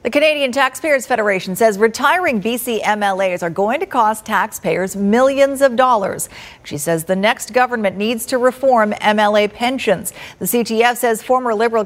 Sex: female